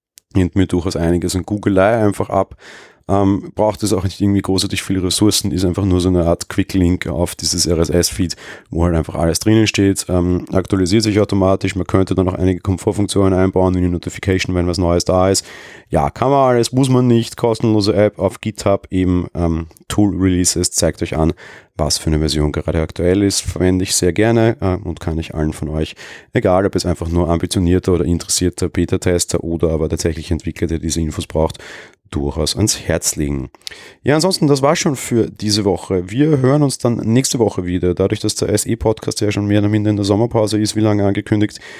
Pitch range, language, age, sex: 85-110 Hz, German, 30-49, male